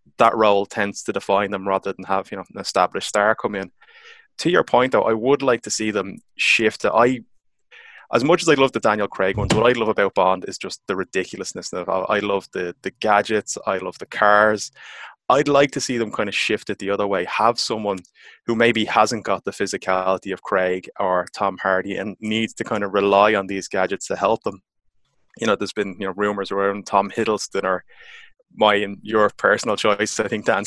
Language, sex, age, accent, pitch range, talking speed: English, male, 20-39, Irish, 100-115 Hz, 220 wpm